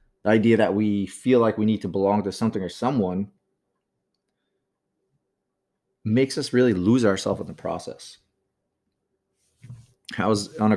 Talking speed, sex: 145 wpm, male